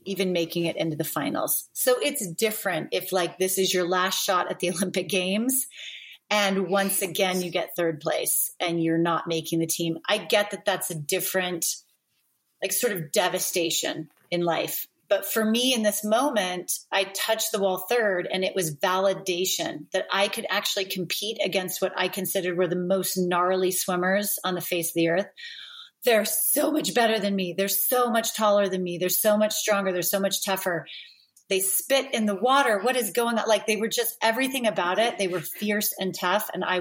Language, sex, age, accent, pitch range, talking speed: English, female, 30-49, American, 180-215 Hz, 200 wpm